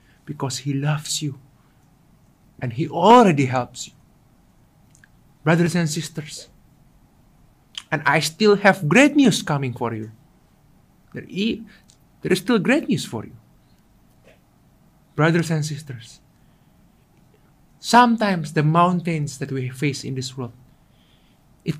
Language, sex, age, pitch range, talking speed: English, male, 50-69, 135-185 Hz, 120 wpm